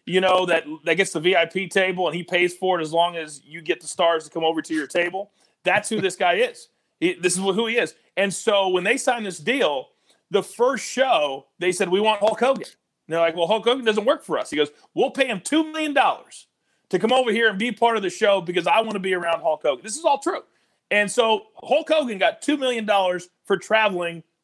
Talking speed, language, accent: 245 wpm, English, American